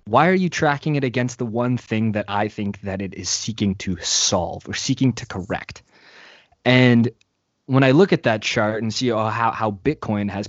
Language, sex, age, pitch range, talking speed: English, male, 20-39, 100-125 Hz, 200 wpm